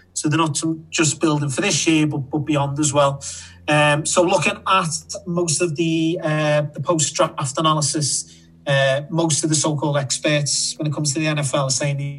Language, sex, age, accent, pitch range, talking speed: English, male, 30-49, British, 140-155 Hz, 185 wpm